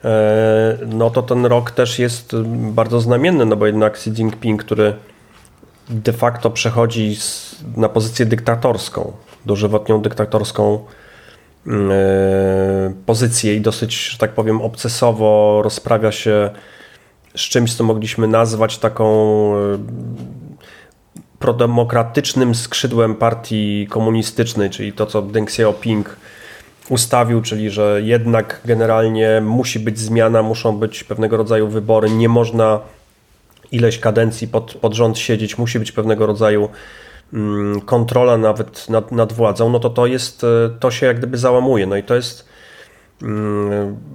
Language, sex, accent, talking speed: Polish, male, native, 130 wpm